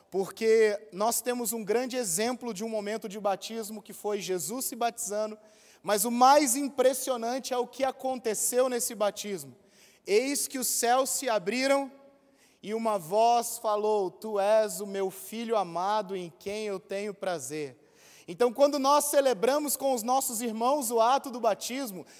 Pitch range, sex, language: 210-265 Hz, male, Portuguese